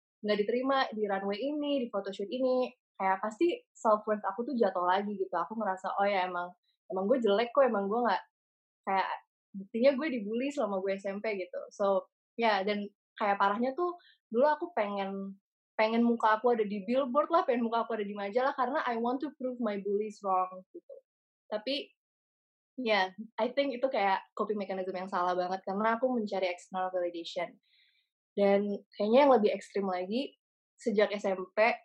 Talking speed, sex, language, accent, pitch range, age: 175 wpm, female, English, Indonesian, 200-255 Hz, 20-39